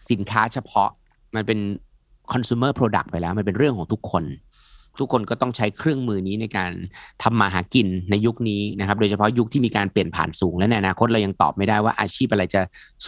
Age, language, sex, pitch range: 30-49, Thai, male, 105-140 Hz